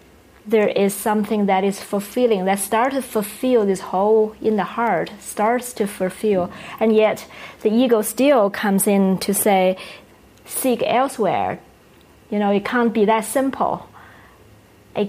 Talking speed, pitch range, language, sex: 145 wpm, 200-230 Hz, English, female